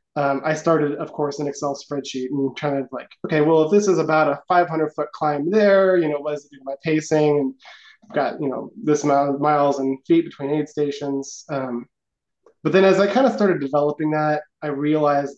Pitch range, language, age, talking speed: 140-155 Hz, English, 20-39, 220 wpm